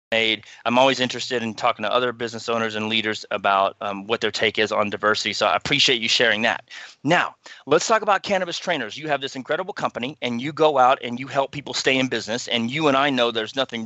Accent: American